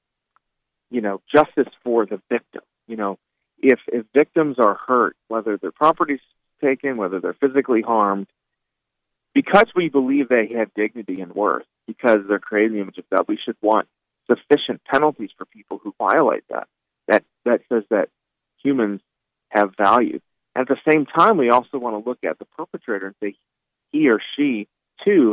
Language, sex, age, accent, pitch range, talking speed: English, male, 40-59, American, 110-145 Hz, 170 wpm